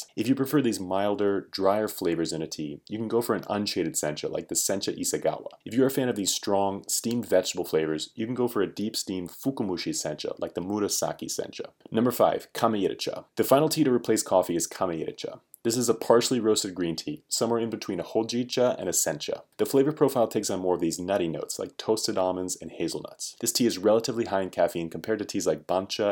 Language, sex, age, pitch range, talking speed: English, male, 30-49, 95-120 Hz, 225 wpm